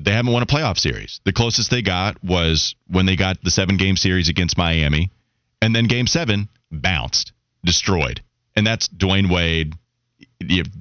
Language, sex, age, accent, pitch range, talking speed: English, male, 30-49, American, 90-120 Hz, 170 wpm